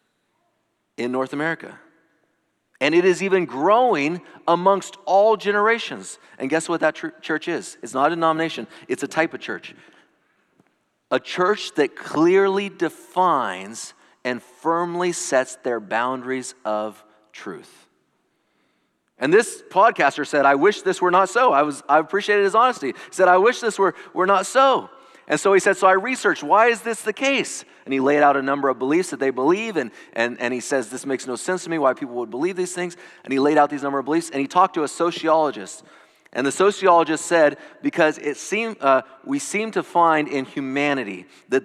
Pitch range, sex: 135-195 Hz, male